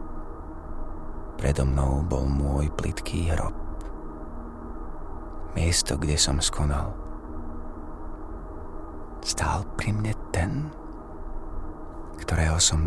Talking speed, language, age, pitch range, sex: 75 wpm, Slovak, 30-49, 80-85 Hz, male